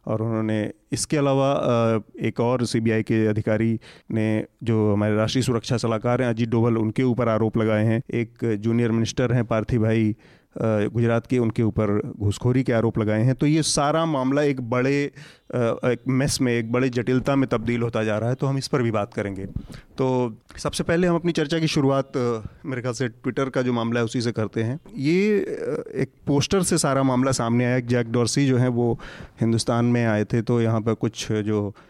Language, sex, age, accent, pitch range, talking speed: Hindi, male, 30-49, native, 110-130 Hz, 200 wpm